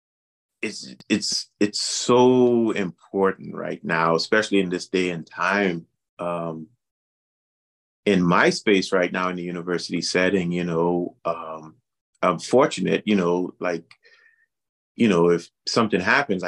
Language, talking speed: English, 130 wpm